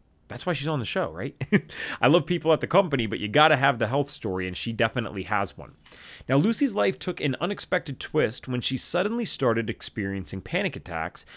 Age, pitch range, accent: 30-49, 115-170 Hz, American